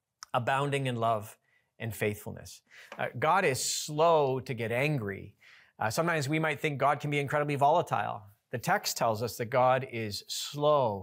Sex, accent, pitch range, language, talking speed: male, American, 120-150 Hz, English, 165 wpm